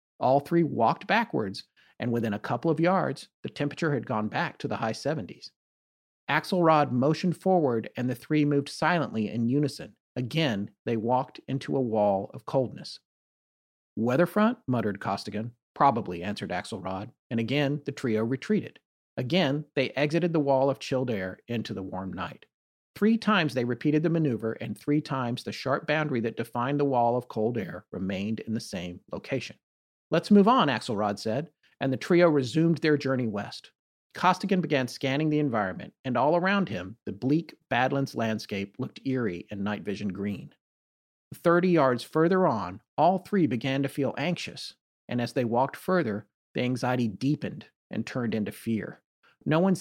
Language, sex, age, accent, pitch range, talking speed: English, male, 40-59, American, 110-165 Hz, 165 wpm